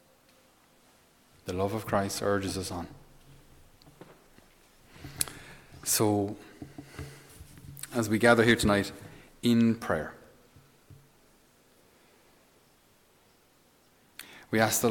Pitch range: 100-115 Hz